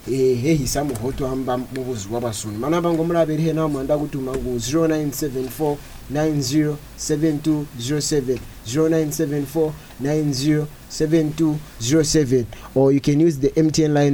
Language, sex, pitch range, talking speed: English, male, 130-155 Hz, 155 wpm